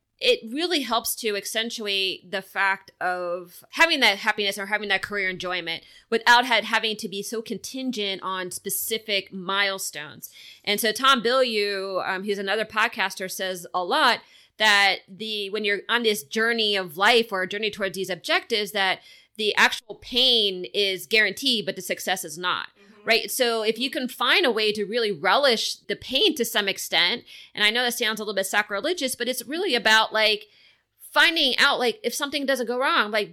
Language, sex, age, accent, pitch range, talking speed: English, female, 30-49, American, 195-250 Hz, 185 wpm